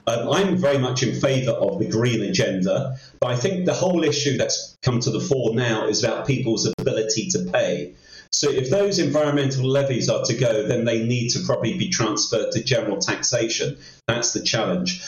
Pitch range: 115-145 Hz